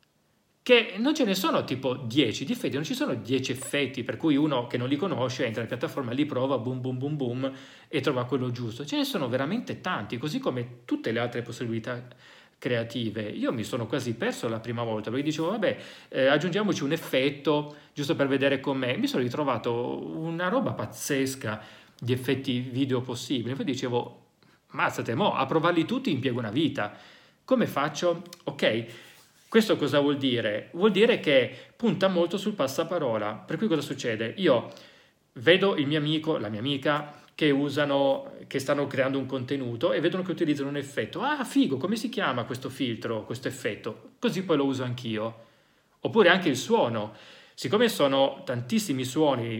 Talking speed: 180 wpm